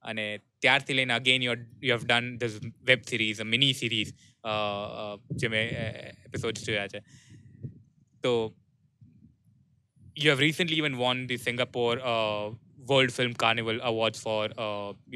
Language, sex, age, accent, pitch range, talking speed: Gujarati, male, 20-39, native, 110-135 Hz, 135 wpm